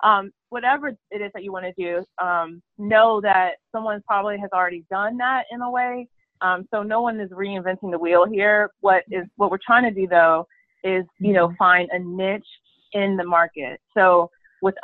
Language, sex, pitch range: English, female, 175-205 Hz